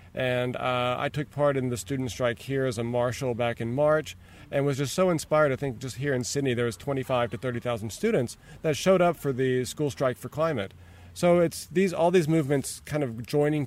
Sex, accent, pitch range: male, American, 120-145 Hz